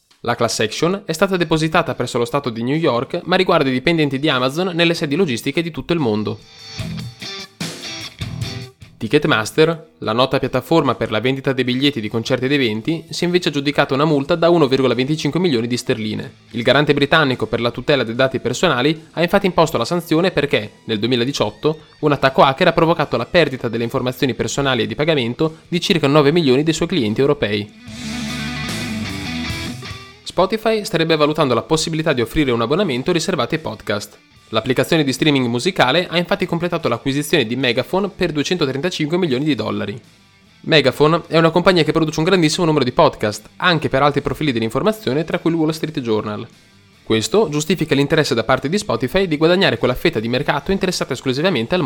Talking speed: 175 wpm